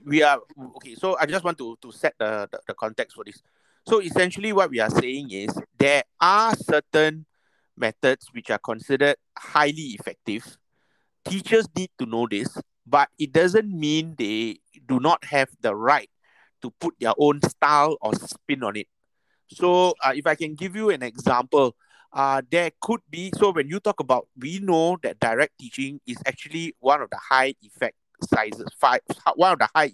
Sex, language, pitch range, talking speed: male, English, 125-175 Hz, 180 wpm